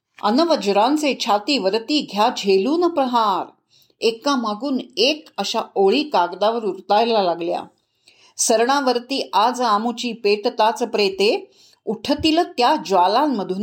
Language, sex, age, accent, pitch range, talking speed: Marathi, female, 50-69, native, 200-270 Hz, 85 wpm